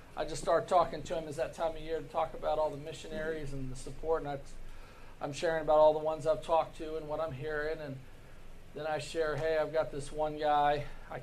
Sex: male